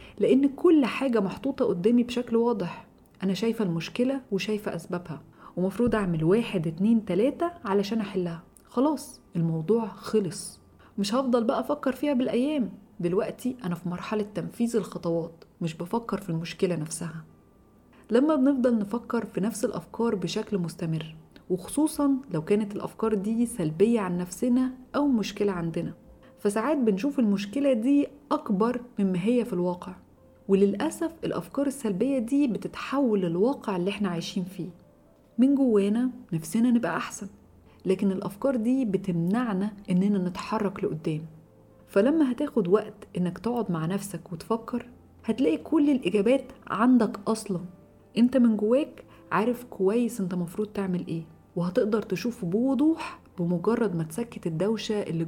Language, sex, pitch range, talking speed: Arabic, female, 180-245 Hz, 135 wpm